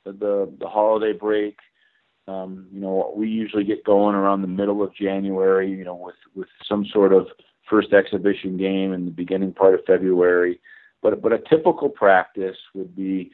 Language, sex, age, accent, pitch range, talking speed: English, male, 40-59, American, 95-100 Hz, 175 wpm